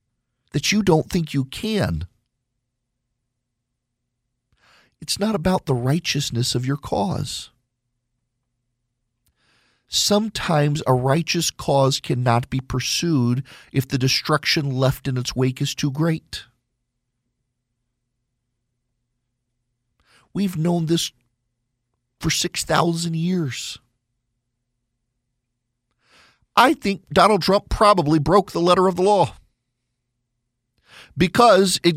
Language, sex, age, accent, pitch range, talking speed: English, male, 40-59, American, 120-155 Hz, 95 wpm